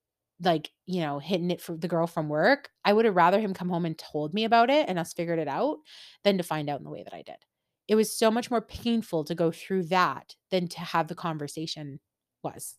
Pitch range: 165-205 Hz